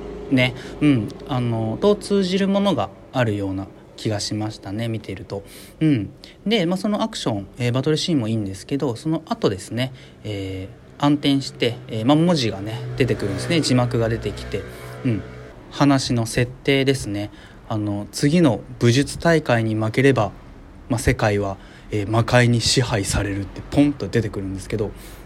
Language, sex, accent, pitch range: Japanese, male, native, 105-160 Hz